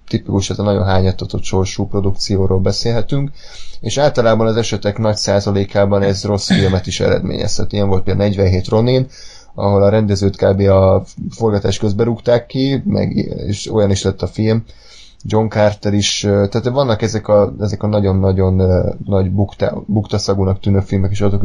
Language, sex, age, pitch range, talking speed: Hungarian, male, 20-39, 95-110 Hz, 155 wpm